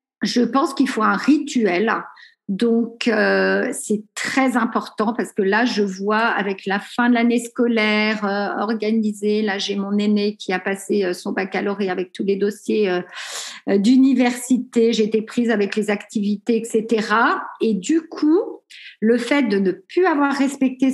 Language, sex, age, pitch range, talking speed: French, female, 50-69, 210-260 Hz, 160 wpm